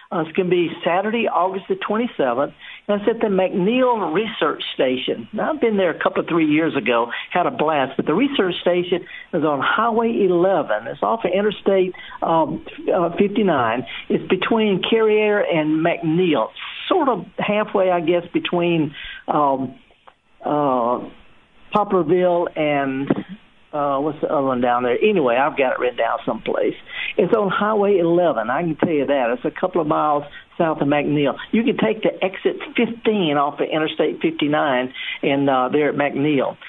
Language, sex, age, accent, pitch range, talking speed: English, male, 60-79, American, 155-210 Hz, 175 wpm